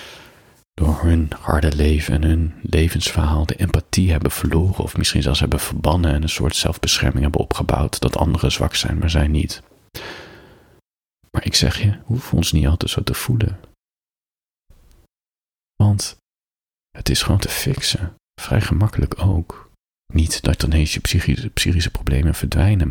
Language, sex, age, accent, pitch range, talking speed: Dutch, male, 40-59, Dutch, 80-100 Hz, 150 wpm